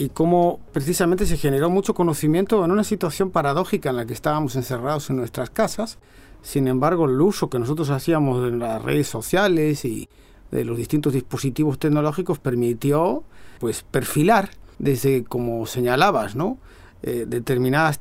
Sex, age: male, 40-59